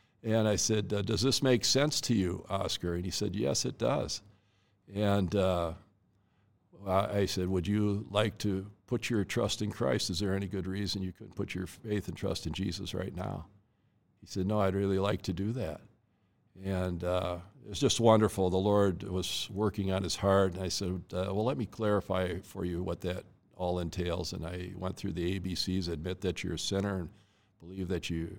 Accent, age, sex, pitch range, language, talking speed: American, 60-79, male, 90-105 Hz, English, 205 wpm